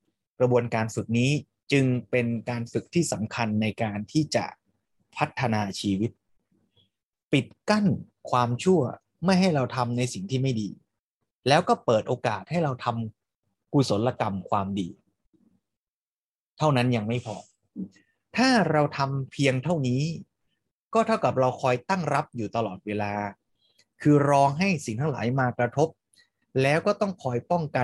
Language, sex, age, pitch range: Thai, male, 20-39, 115-160 Hz